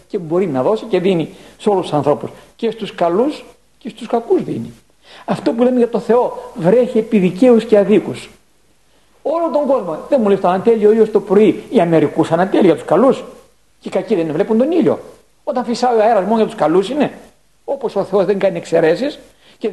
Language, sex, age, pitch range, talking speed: Greek, male, 50-69, 175-240 Hz, 200 wpm